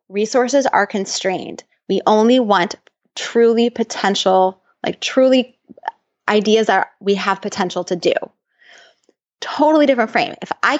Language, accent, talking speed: English, American, 120 wpm